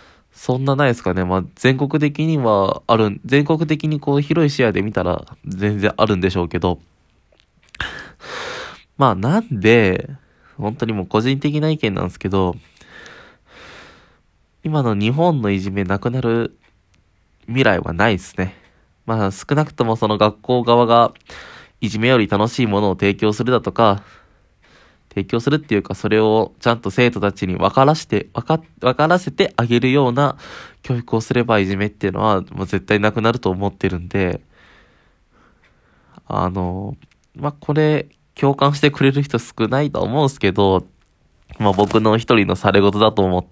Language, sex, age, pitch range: Japanese, male, 20-39, 95-130 Hz